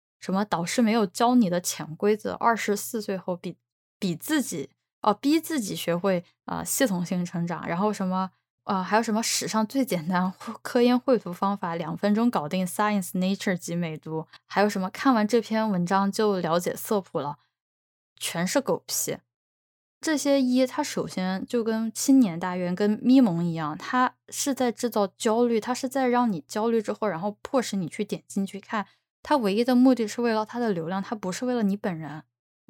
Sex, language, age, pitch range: female, Chinese, 10-29, 180-245 Hz